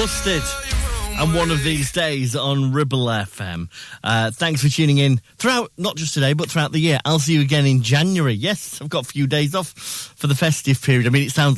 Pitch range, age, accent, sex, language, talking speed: 105-140 Hz, 30-49, British, male, English, 225 wpm